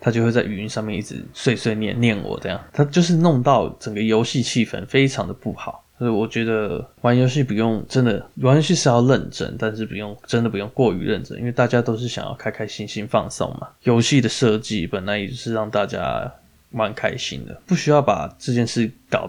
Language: Chinese